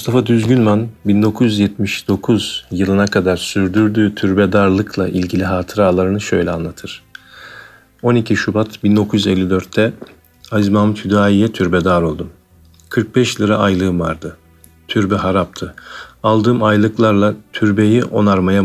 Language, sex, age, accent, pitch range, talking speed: Turkish, male, 40-59, native, 90-110 Hz, 95 wpm